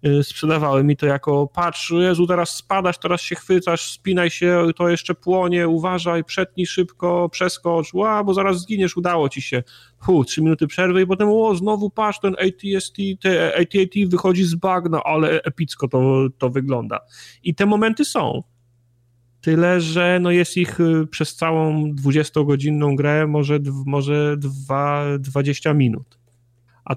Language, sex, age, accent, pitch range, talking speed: Polish, male, 40-59, native, 130-170 Hz, 145 wpm